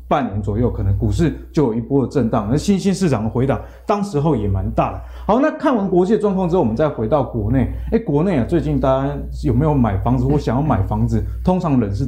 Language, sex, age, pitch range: Chinese, male, 20-39, 115-180 Hz